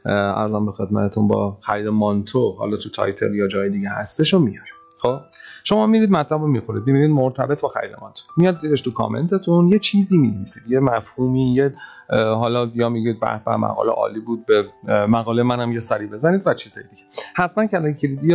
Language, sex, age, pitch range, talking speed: Arabic, male, 30-49, 105-150 Hz, 180 wpm